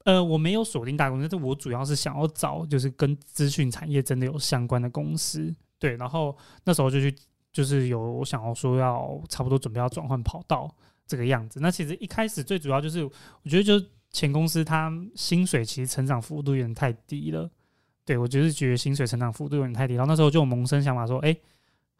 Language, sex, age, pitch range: Chinese, male, 20-39, 130-155 Hz